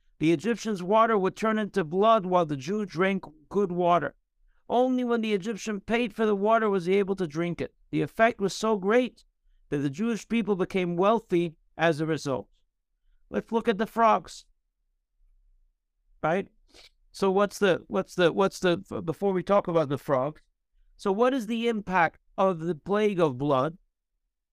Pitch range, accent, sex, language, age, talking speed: 170-220 Hz, American, male, English, 60-79, 170 wpm